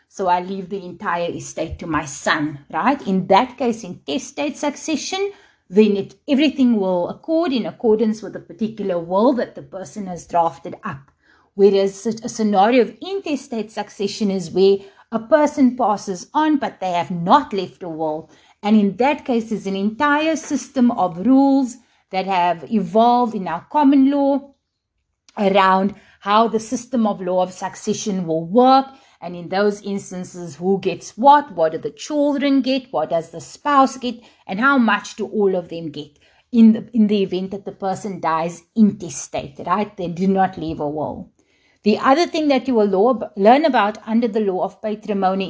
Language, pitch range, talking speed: English, 180-255 Hz, 175 wpm